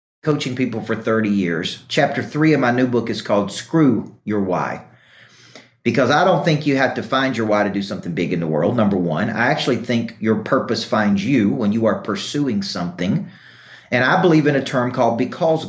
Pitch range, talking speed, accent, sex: 110-135 Hz, 210 wpm, American, male